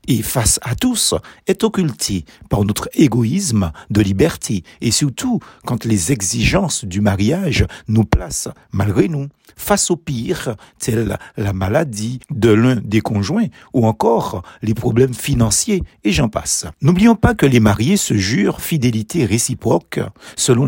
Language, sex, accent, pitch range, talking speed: French, male, French, 105-155 Hz, 145 wpm